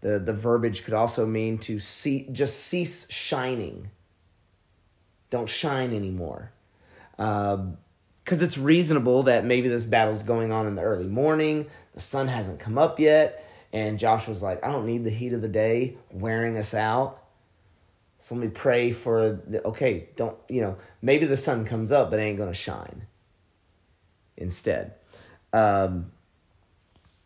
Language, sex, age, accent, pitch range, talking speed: English, male, 30-49, American, 100-125 Hz, 155 wpm